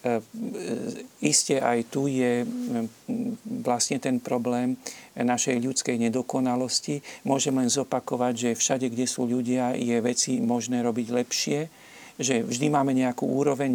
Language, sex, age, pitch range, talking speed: Slovak, male, 50-69, 120-140 Hz, 120 wpm